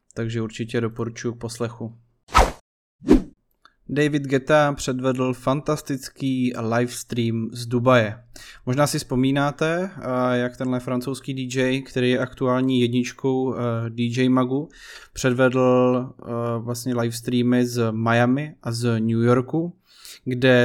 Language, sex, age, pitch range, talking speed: Czech, male, 20-39, 120-135 Hz, 100 wpm